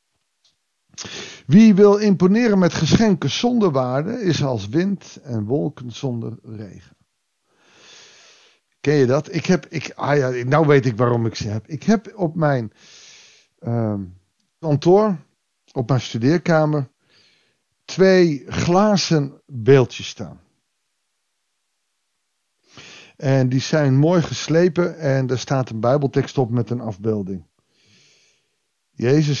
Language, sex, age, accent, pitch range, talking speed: Dutch, male, 50-69, Dutch, 120-160 Hz, 105 wpm